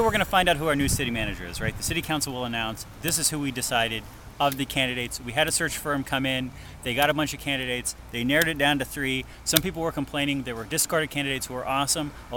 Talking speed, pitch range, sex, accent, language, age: 270 wpm, 120-160 Hz, male, American, English, 30-49